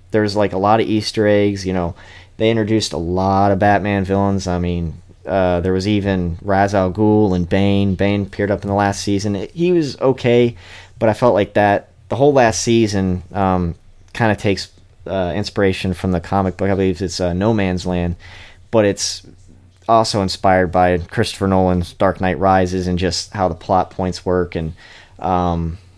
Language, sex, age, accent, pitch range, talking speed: English, male, 30-49, American, 90-105 Hz, 190 wpm